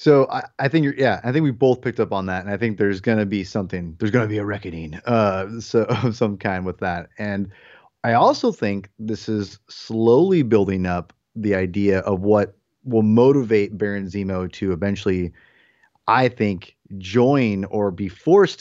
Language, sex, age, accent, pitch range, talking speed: English, male, 30-49, American, 100-120 Hz, 190 wpm